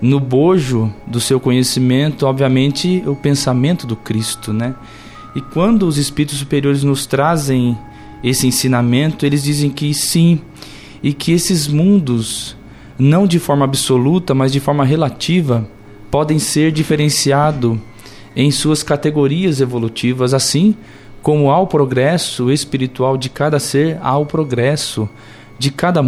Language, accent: Portuguese, Brazilian